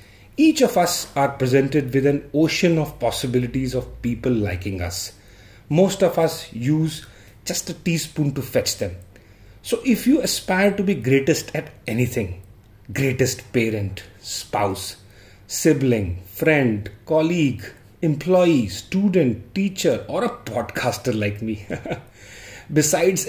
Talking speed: 125 wpm